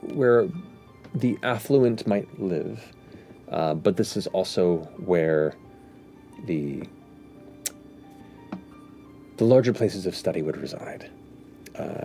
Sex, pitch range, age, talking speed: male, 95-125 Hz, 30-49, 100 wpm